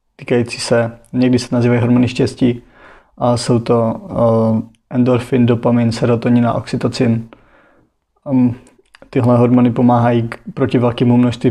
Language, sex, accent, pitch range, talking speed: Czech, male, native, 115-125 Hz, 110 wpm